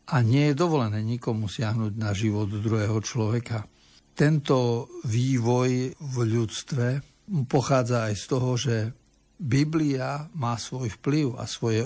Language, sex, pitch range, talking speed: Slovak, male, 110-135 Hz, 125 wpm